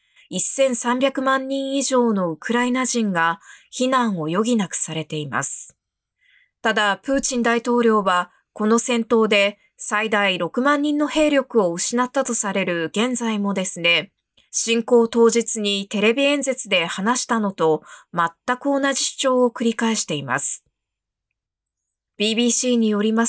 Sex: female